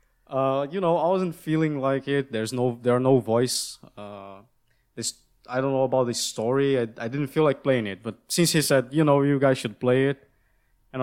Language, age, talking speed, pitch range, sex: English, 20-39, 225 wpm, 120-150 Hz, male